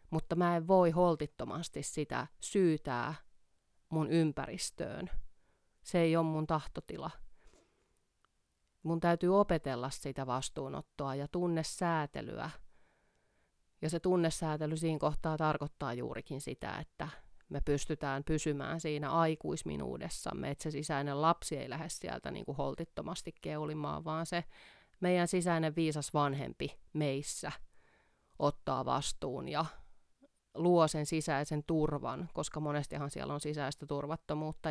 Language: Finnish